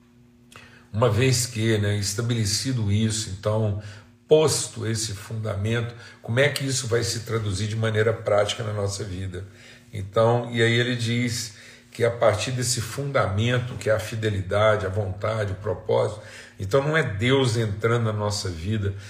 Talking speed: 155 wpm